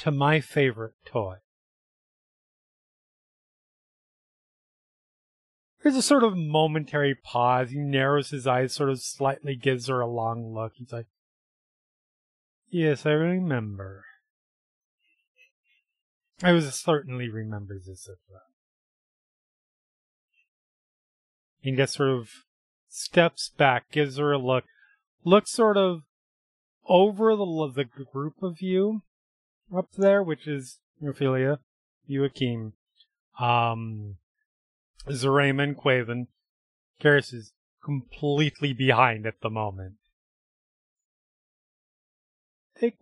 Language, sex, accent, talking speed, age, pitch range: English, male, American, 100 wpm, 30-49, 120-185 Hz